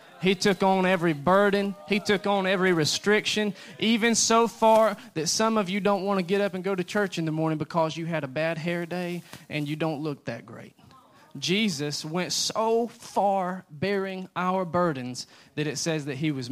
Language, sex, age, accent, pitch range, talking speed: English, male, 20-39, American, 160-210 Hz, 200 wpm